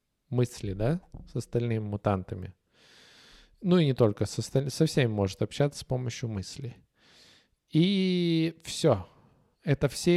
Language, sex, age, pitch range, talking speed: Russian, male, 20-39, 115-160 Hz, 120 wpm